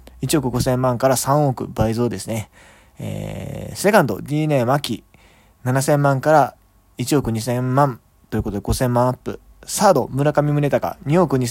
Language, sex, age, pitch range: Japanese, male, 20-39, 110-135 Hz